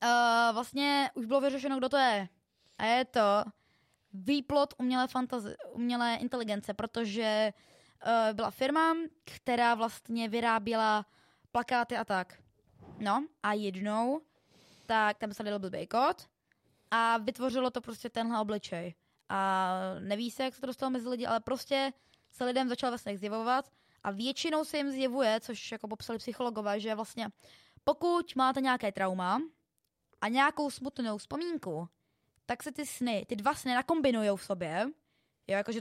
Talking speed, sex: 145 wpm, female